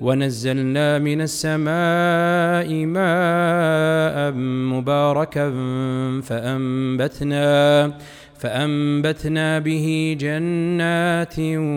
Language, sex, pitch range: Arabic, male, 150-195 Hz